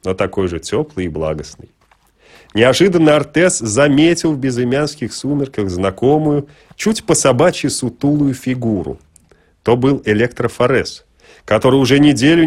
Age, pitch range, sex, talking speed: 30-49, 105-145 Hz, male, 110 wpm